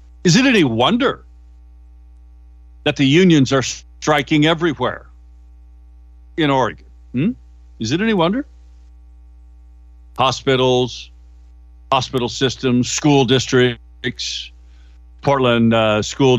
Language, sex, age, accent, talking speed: English, male, 60-79, American, 90 wpm